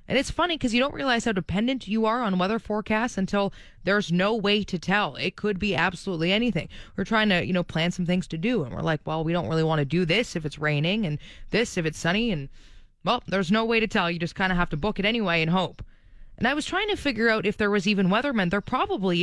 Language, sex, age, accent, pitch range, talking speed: English, female, 20-39, American, 160-215 Hz, 270 wpm